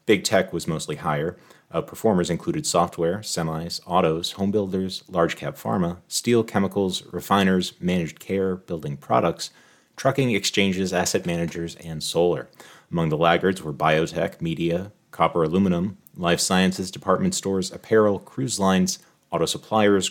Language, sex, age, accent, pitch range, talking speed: English, male, 30-49, American, 80-95 Hz, 135 wpm